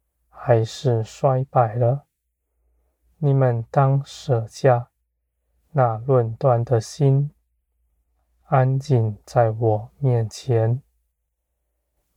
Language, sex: Chinese, male